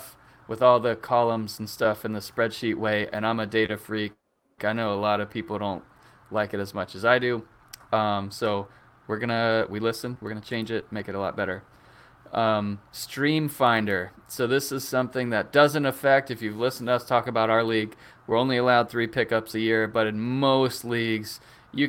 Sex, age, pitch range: male, 20-39, 110-125 Hz